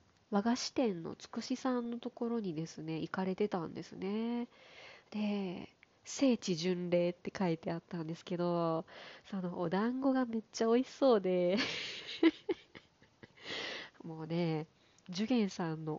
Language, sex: Japanese, female